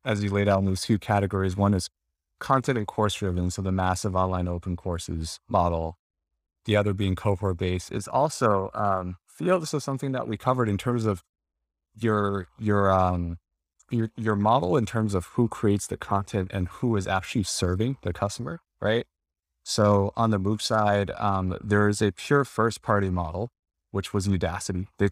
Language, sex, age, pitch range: English, male, 30-49, 90-110 Hz